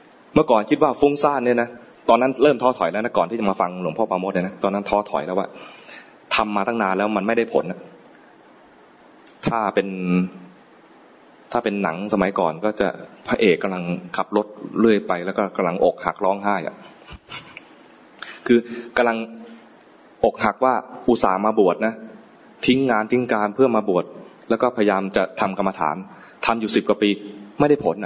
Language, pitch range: English, 100-125 Hz